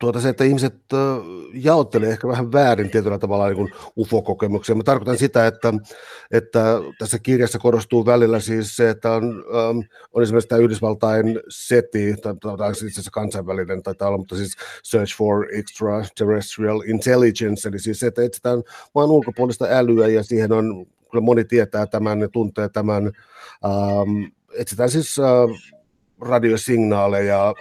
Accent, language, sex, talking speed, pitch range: native, Finnish, male, 135 wpm, 105-120 Hz